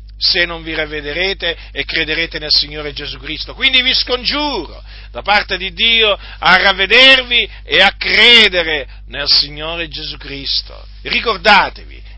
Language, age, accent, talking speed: Italian, 50-69, native, 135 wpm